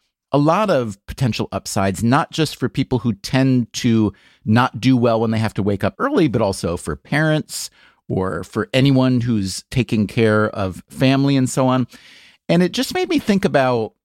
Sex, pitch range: male, 110-145 Hz